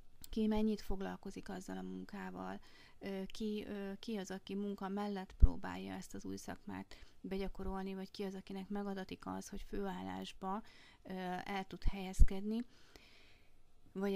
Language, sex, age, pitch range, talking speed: Hungarian, female, 30-49, 185-210 Hz, 125 wpm